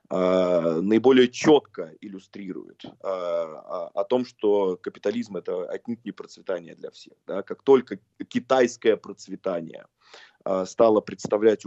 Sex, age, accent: male, 20-39, native